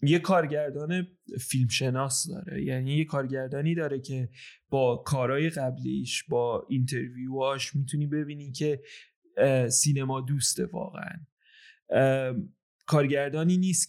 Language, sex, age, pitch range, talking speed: Persian, male, 30-49, 135-165 Hz, 100 wpm